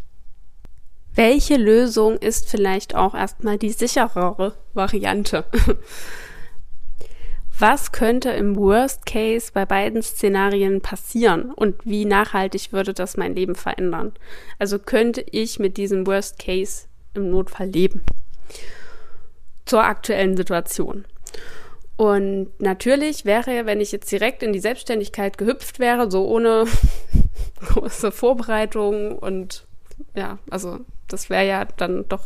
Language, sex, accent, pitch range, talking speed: German, female, German, 195-235 Hz, 115 wpm